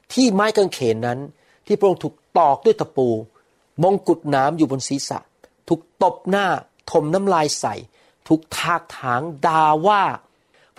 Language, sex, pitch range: Thai, male, 130-185 Hz